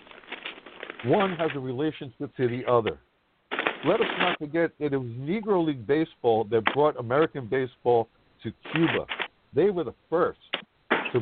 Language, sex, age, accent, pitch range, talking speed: English, male, 60-79, American, 120-155 Hz, 150 wpm